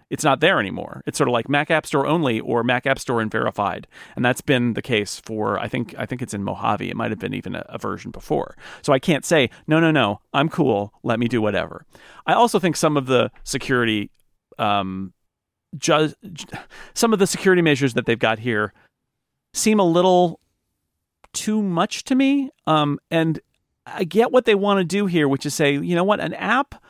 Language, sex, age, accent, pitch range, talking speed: English, male, 40-59, American, 120-185 Hz, 215 wpm